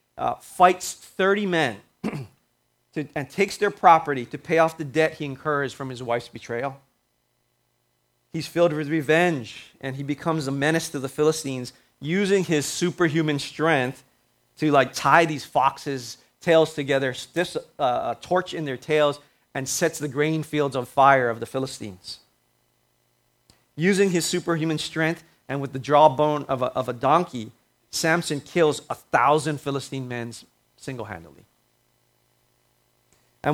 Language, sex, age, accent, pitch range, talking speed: English, male, 30-49, American, 125-160 Hz, 140 wpm